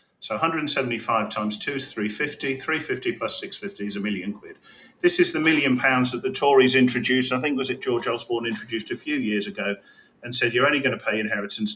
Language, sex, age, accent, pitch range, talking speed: English, male, 40-59, British, 115-195 Hz, 210 wpm